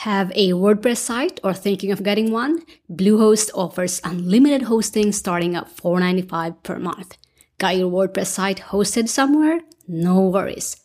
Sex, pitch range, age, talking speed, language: female, 180-230 Hz, 30-49, 155 wpm, English